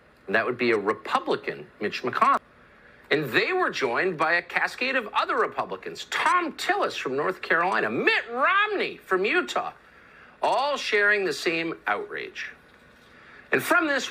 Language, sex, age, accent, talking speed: English, male, 50-69, American, 150 wpm